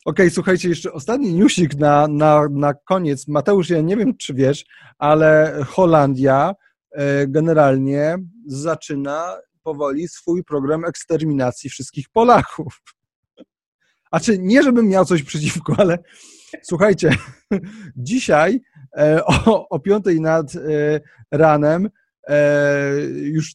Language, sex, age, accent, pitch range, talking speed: Polish, male, 30-49, native, 140-170 Hz, 100 wpm